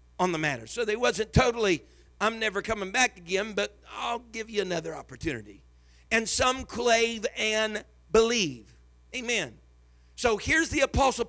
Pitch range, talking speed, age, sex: 185-245 Hz, 150 wpm, 50-69, male